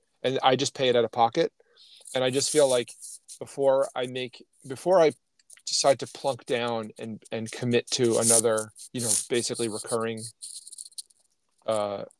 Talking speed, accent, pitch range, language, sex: 155 wpm, American, 115-145 Hz, English, male